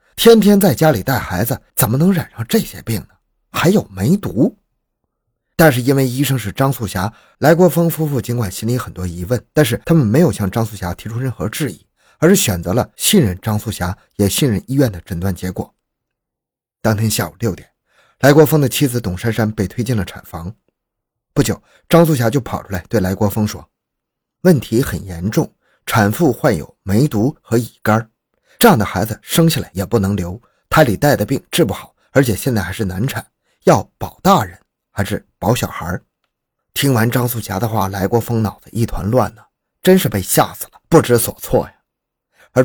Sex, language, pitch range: male, Chinese, 100-135 Hz